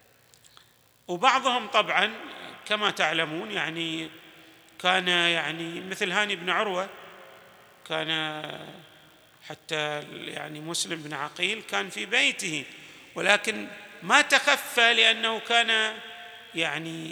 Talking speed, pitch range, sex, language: 90 wpm, 170-225 Hz, male, Arabic